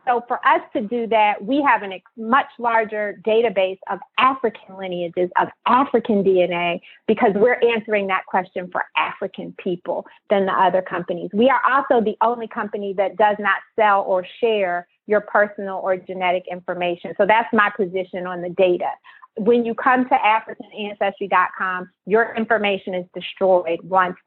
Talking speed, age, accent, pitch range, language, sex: 160 wpm, 30-49, American, 190-235 Hz, English, female